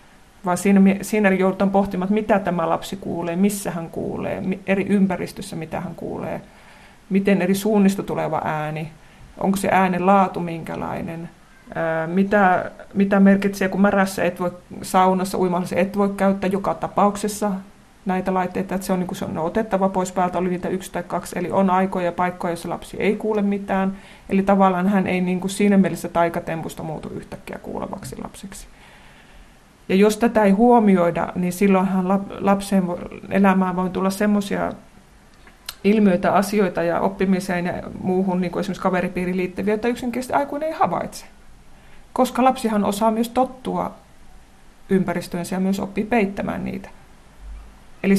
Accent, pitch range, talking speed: native, 180-200 Hz, 150 wpm